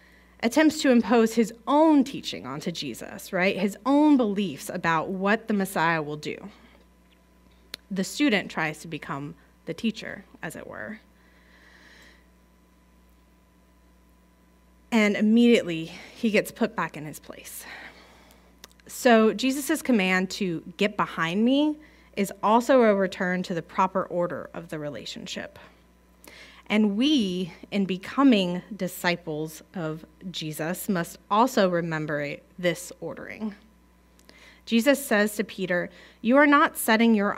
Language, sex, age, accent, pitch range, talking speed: English, female, 30-49, American, 150-225 Hz, 120 wpm